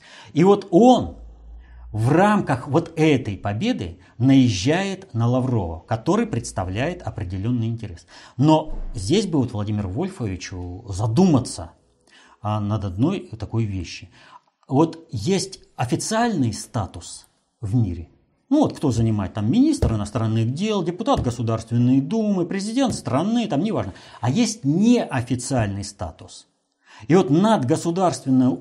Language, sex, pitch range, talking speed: Russian, male, 105-165 Hz, 115 wpm